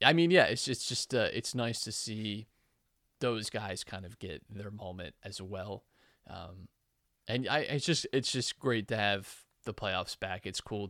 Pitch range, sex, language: 100-125 Hz, male, English